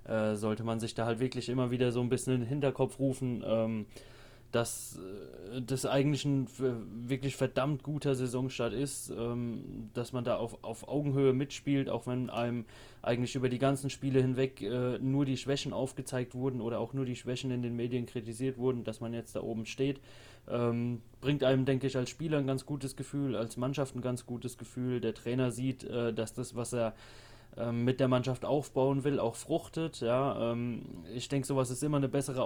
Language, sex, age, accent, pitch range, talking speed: German, male, 20-39, German, 115-135 Hz, 180 wpm